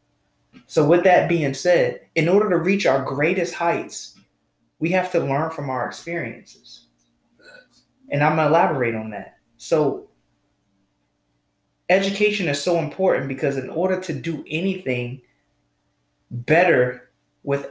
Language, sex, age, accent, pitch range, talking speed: English, male, 20-39, American, 140-185 Hz, 130 wpm